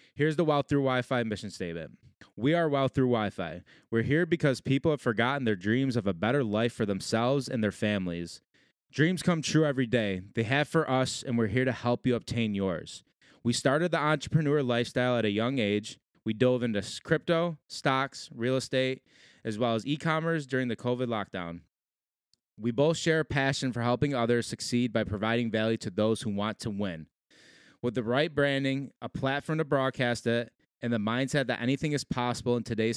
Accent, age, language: American, 20-39, English